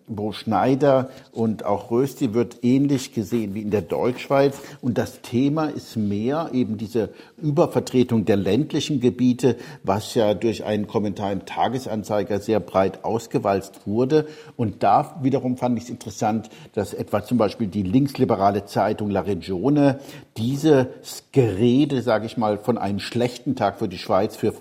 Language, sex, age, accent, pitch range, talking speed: German, male, 60-79, German, 110-135 Hz, 155 wpm